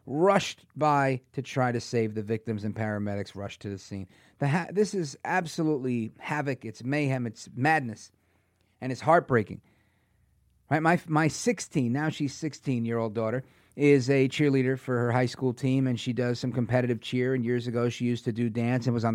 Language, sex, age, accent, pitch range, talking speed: English, male, 40-59, American, 115-155 Hz, 190 wpm